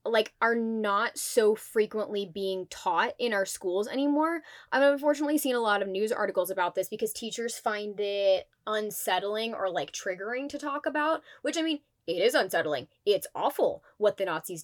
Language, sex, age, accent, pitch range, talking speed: English, female, 20-39, American, 190-265 Hz, 175 wpm